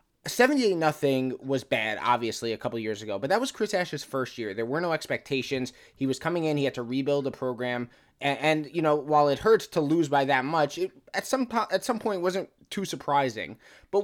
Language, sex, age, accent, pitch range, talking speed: English, male, 20-39, American, 130-180 Hz, 230 wpm